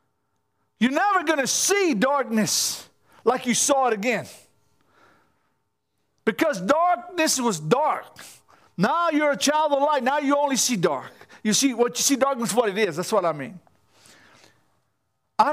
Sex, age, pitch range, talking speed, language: male, 50-69, 235-295 Hz, 155 wpm, English